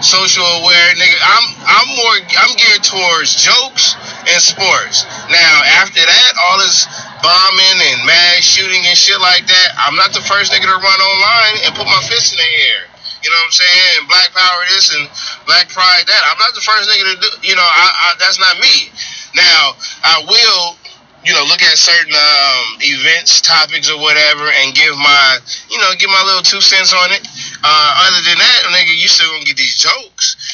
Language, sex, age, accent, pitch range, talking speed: English, male, 20-39, American, 175-200 Hz, 200 wpm